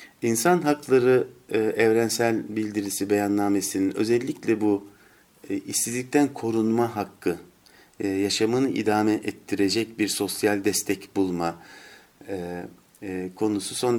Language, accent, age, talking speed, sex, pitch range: Turkish, native, 50-69, 80 wpm, male, 100-115 Hz